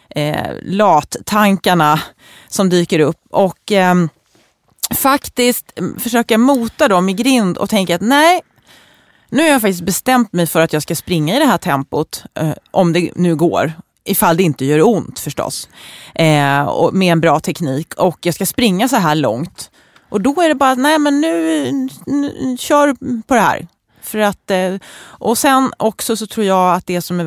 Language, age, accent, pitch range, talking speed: English, 30-49, Swedish, 170-235 Hz, 170 wpm